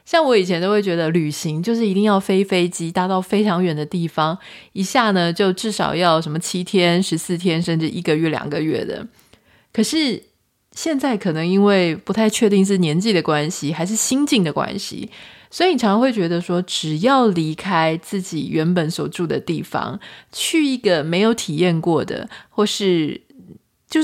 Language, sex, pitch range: Chinese, female, 165-210 Hz